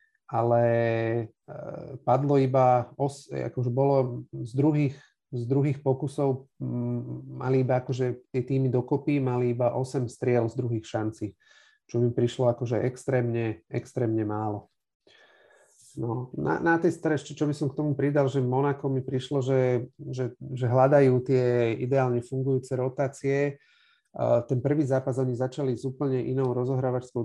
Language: Slovak